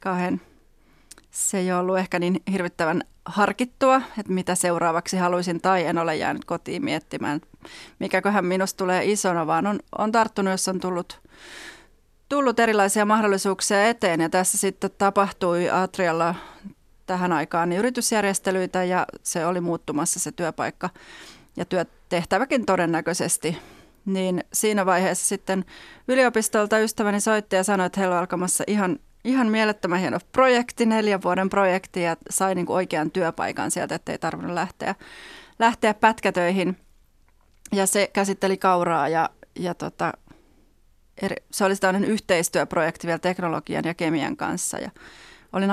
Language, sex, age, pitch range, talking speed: Finnish, female, 30-49, 175-205 Hz, 135 wpm